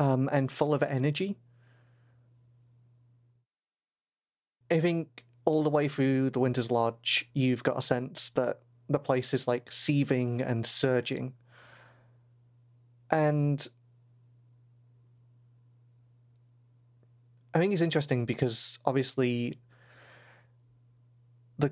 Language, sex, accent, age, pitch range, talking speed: English, male, British, 30-49, 120-135 Hz, 95 wpm